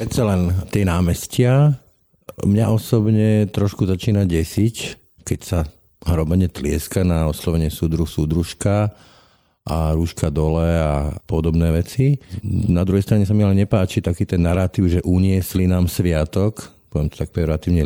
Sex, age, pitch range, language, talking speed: male, 50-69, 85-100 Hz, Slovak, 140 wpm